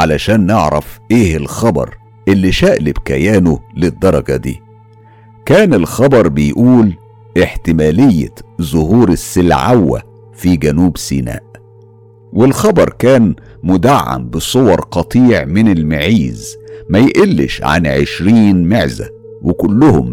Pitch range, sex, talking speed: 80-115 Hz, male, 90 wpm